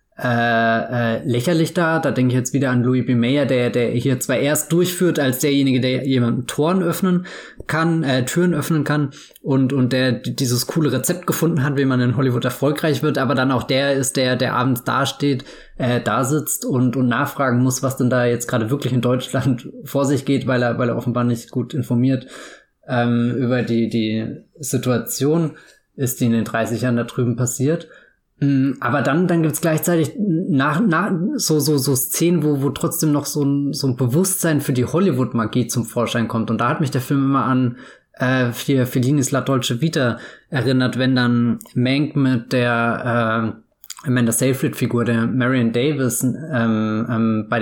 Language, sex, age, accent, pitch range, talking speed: German, male, 20-39, German, 120-145 Hz, 190 wpm